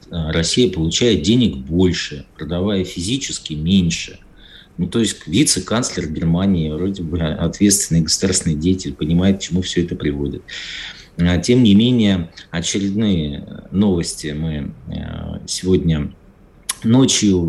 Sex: male